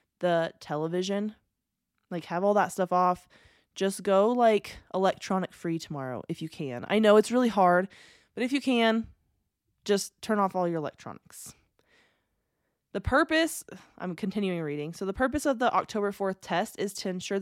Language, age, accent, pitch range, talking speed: English, 20-39, American, 175-225 Hz, 165 wpm